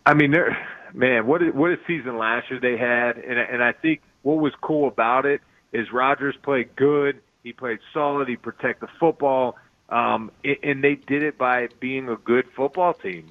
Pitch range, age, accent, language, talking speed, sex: 120-140 Hz, 30-49, American, English, 195 wpm, male